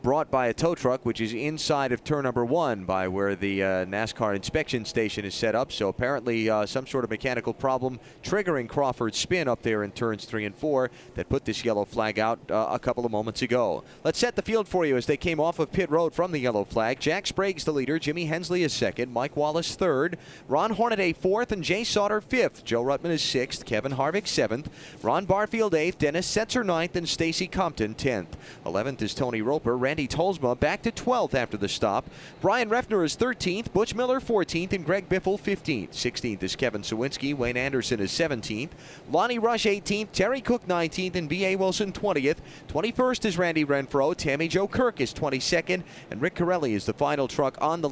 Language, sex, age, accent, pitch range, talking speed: English, male, 30-49, American, 120-180 Hz, 205 wpm